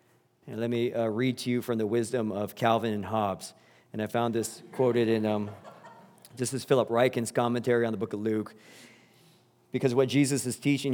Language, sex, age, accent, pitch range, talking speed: English, male, 40-59, American, 110-130 Hz, 195 wpm